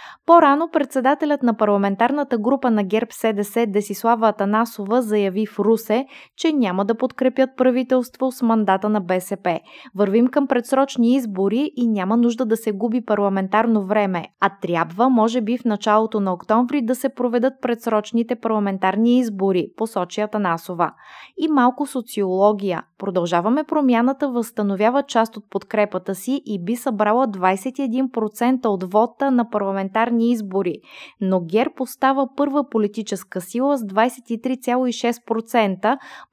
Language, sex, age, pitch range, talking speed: Bulgarian, female, 20-39, 205-250 Hz, 125 wpm